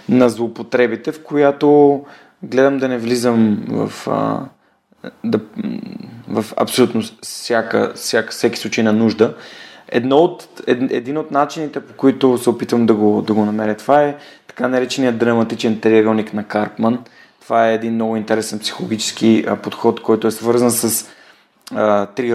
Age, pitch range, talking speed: 30-49, 110-125 Hz, 150 wpm